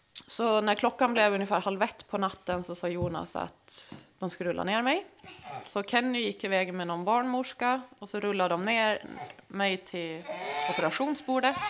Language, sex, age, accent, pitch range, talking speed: Swedish, female, 20-39, native, 170-220 Hz, 170 wpm